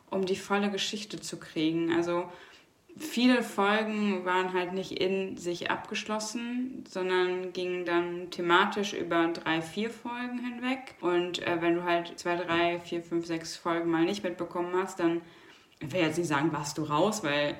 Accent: German